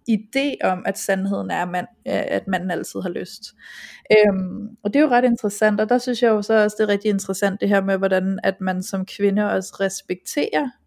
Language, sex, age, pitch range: Danish, female, 20-39, 190-225 Hz